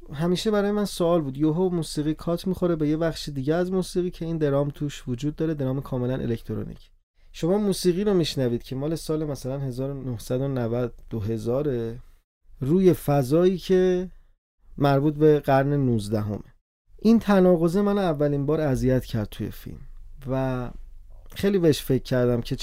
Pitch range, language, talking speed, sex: 115-155 Hz, Persian, 150 wpm, male